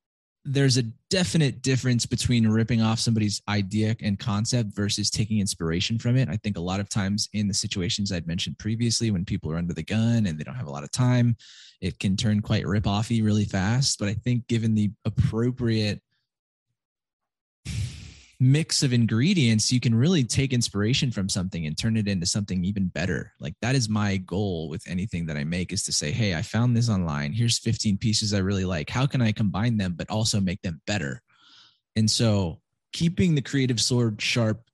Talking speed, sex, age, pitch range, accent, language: 200 wpm, male, 20-39, 100-125 Hz, American, English